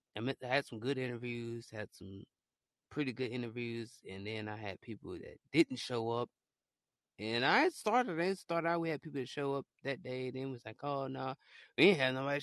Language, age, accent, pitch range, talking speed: English, 20-39, American, 110-145 Hz, 215 wpm